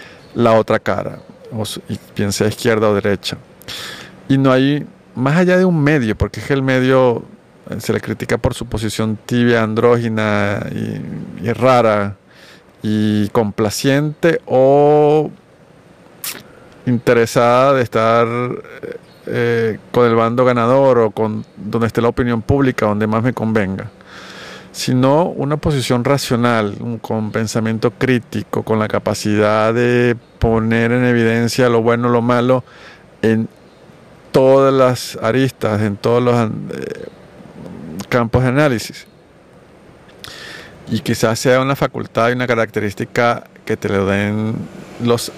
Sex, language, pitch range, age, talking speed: male, Spanish, 110-130 Hz, 50-69, 125 wpm